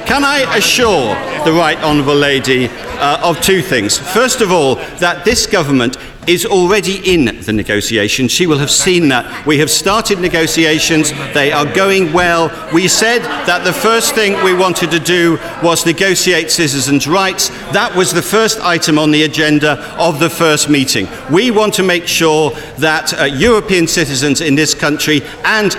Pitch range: 145-190 Hz